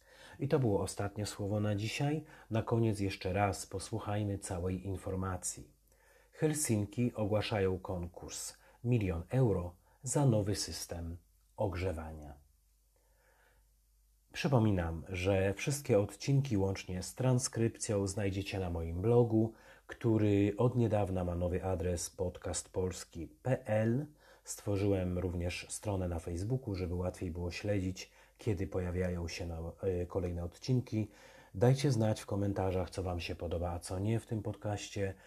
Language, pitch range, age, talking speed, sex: Polish, 90-110 Hz, 40-59, 115 wpm, male